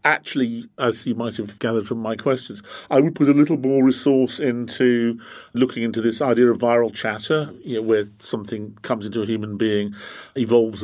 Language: English